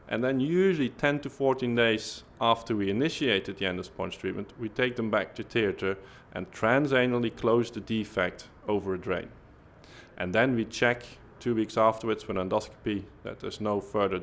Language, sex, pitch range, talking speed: English, male, 95-120 Hz, 170 wpm